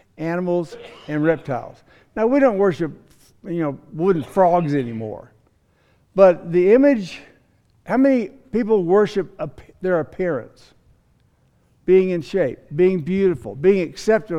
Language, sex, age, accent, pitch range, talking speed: English, male, 60-79, American, 155-205 Hz, 115 wpm